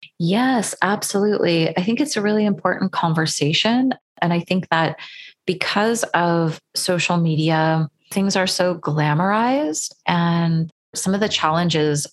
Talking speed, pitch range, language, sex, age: 130 wpm, 160-195 Hz, English, female, 30-49